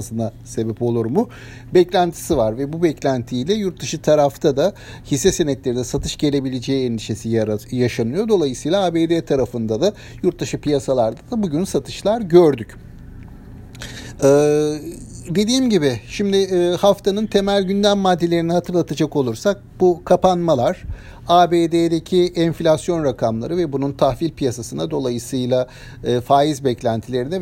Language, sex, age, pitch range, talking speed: Turkish, male, 60-79, 120-170 Hz, 120 wpm